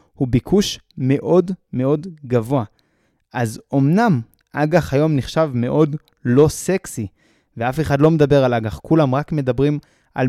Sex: male